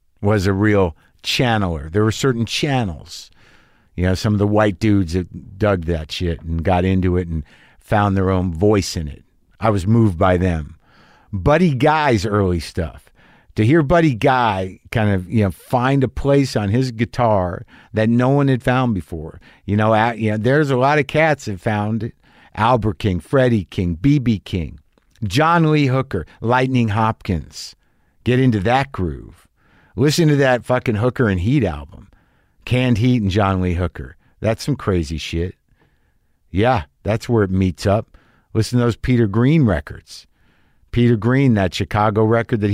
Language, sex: English, male